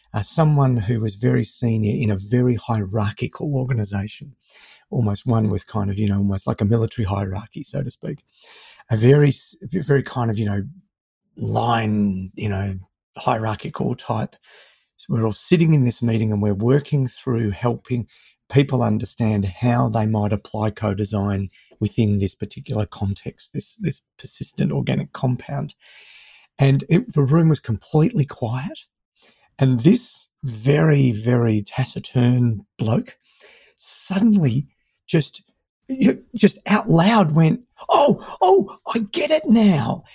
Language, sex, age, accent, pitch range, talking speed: English, male, 30-49, Australian, 110-175 Hz, 135 wpm